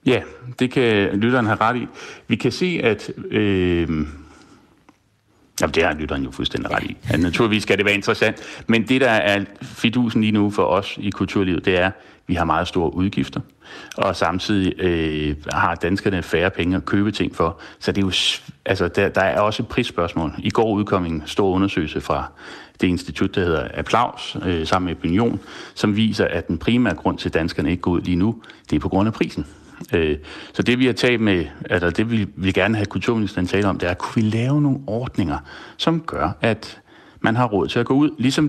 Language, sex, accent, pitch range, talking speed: Danish, male, native, 90-115 Hz, 210 wpm